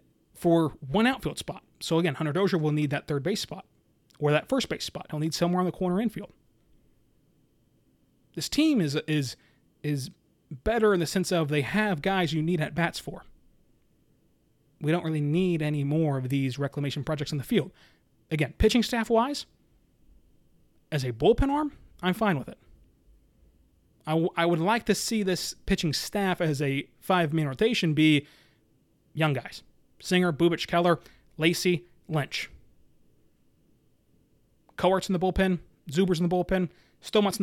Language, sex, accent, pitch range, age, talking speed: English, male, American, 145-185 Hz, 30-49, 160 wpm